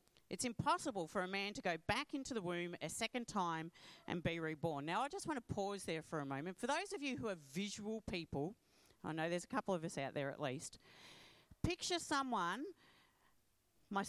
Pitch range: 165-260 Hz